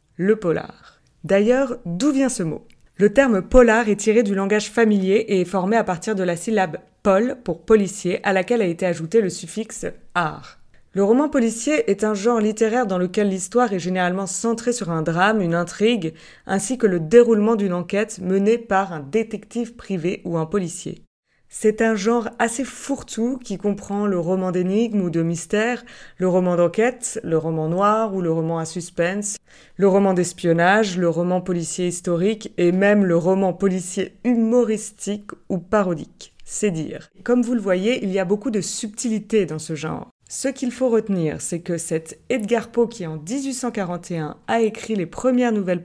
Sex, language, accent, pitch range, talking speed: female, French, French, 180-230 Hz, 180 wpm